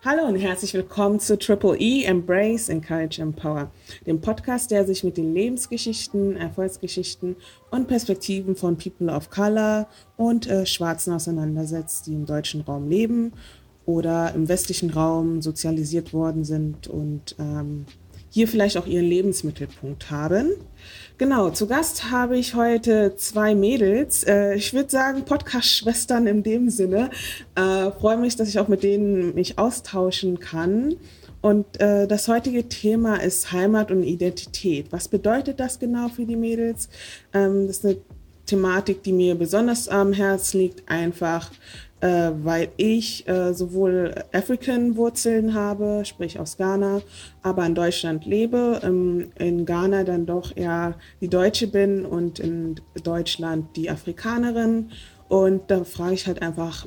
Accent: German